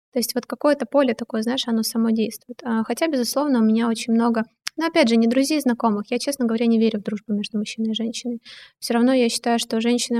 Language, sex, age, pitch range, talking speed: Russian, female, 20-39, 220-245 Hz, 230 wpm